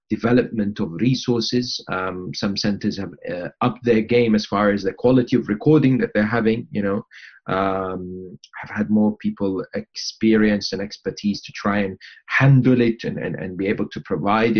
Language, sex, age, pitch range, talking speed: English, male, 30-49, 105-135 Hz, 175 wpm